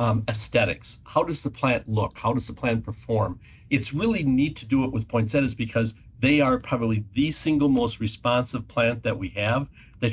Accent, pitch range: American, 115-135 Hz